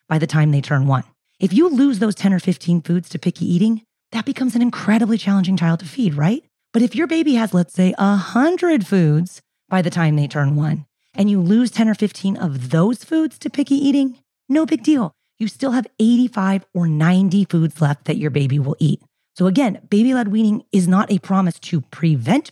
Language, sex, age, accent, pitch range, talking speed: English, female, 30-49, American, 160-215 Hz, 215 wpm